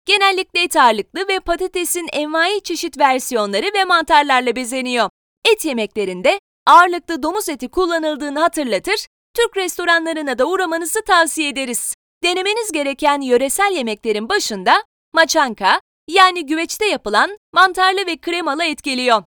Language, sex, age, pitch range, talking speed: Turkish, female, 30-49, 285-370 Hz, 120 wpm